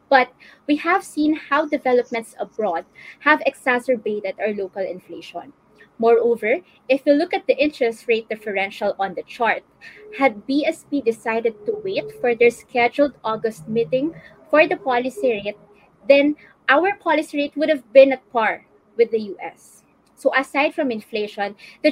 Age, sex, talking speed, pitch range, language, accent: 20-39, female, 150 wpm, 220-285 Hz, English, Filipino